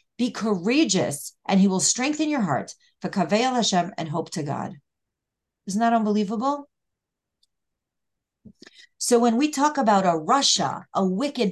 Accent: American